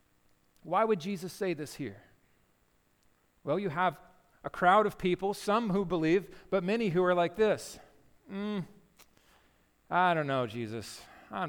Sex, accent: male, American